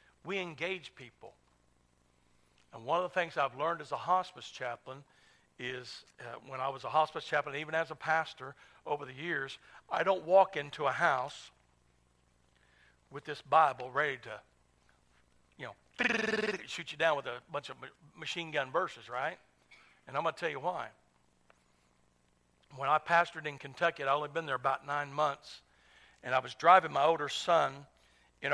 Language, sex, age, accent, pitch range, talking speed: English, male, 60-79, American, 120-165 Hz, 170 wpm